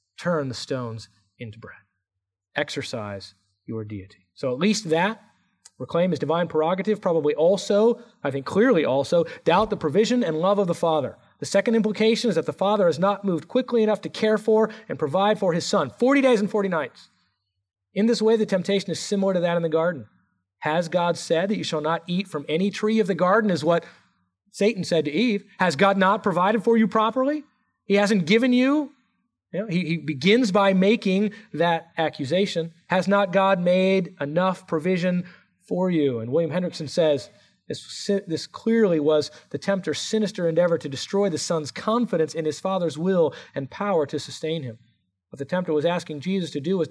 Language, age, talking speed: English, 40-59, 190 wpm